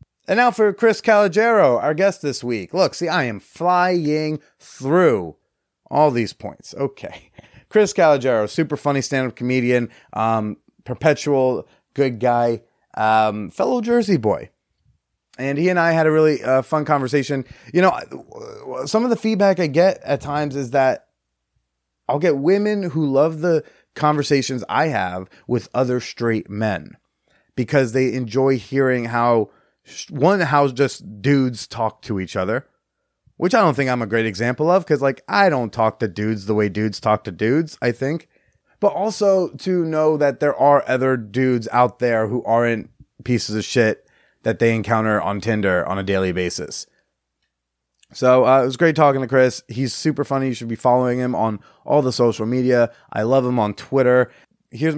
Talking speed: 170 wpm